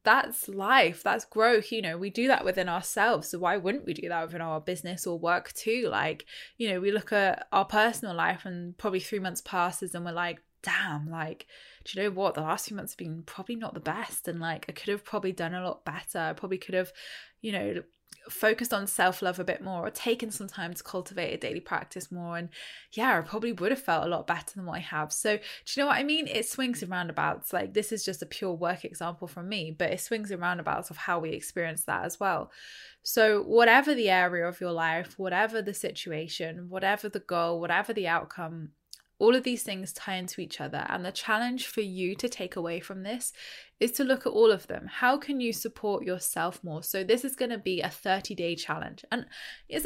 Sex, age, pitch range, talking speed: female, 10-29, 175-220 Hz, 230 wpm